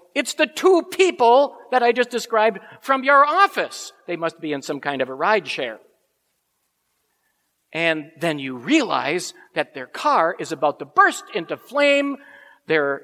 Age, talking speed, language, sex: 50-69, 160 wpm, English, male